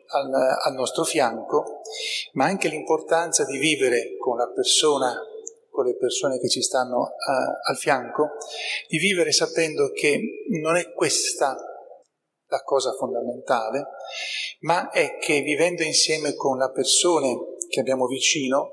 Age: 40-59